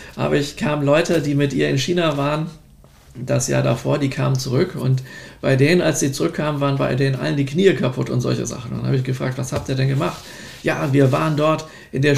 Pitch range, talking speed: 130-150 Hz, 235 wpm